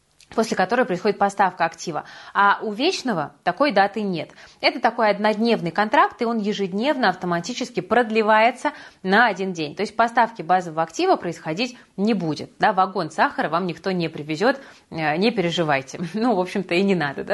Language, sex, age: Russian, female, 20-39